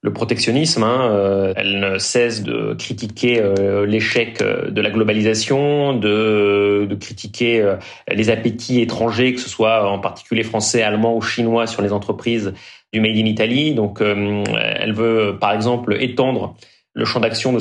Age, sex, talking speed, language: 30-49, male, 150 wpm, French